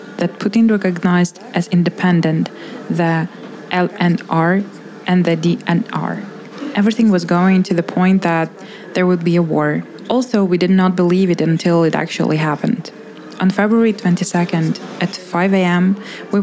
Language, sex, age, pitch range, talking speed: Ukrainian, female, 20-39, 170-200 Hz, 140 wpm